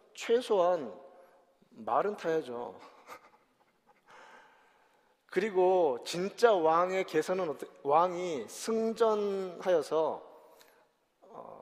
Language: Korean